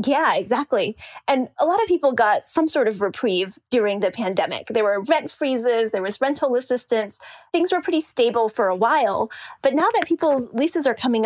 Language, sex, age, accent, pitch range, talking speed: English, female, 20-39, American, 210-275 Hz, 195 wpm